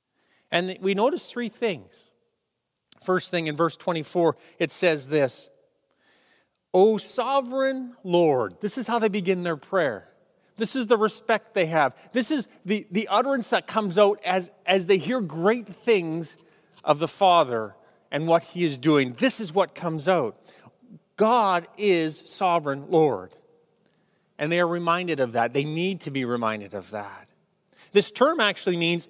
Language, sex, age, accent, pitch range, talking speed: English, male, 40-59, American, 155-205 Hz, 160 wpm